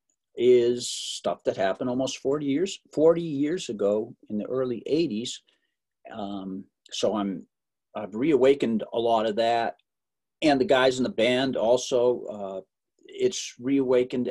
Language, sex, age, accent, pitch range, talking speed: English, male, 50-69, American, 115-190 Hz, 140 wpm